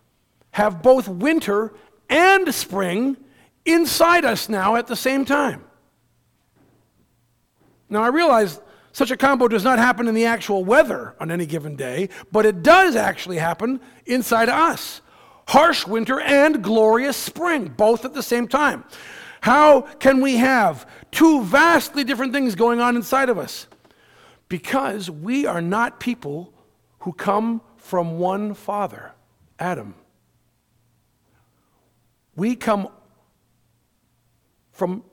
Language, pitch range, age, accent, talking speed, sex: English, 170-255 Hz, 50-69, American, 125 wpm, male